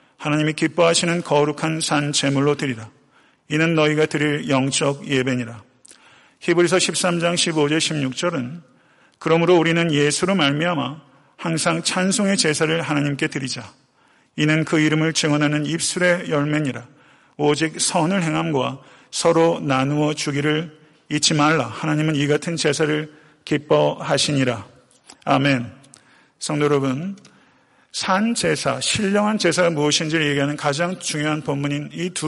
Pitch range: 140-165 Hz